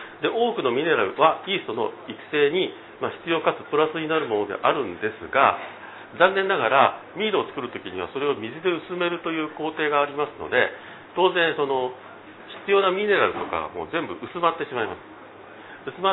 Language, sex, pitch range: Japanese, male, 150-195 Hz